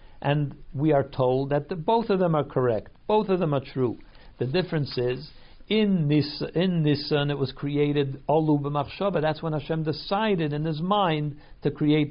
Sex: male